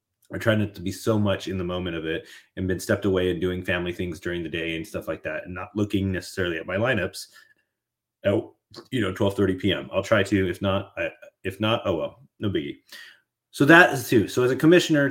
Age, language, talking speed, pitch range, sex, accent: 30-49, English, 235 wpm, 95-120 Hz, male, American